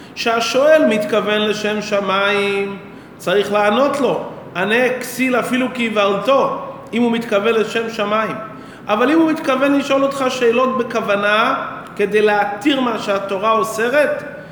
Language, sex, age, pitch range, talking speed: Hebrew, male, 40-59, 205-250 Hz, 120 wpm